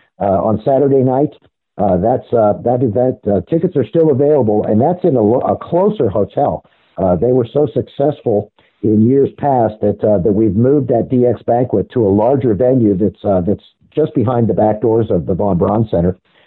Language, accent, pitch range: English, American, 100-130 Hz